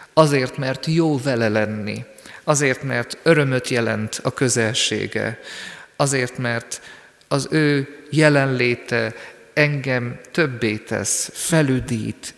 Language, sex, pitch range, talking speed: Hungarian, male, 115-145 Hz, 95 wpm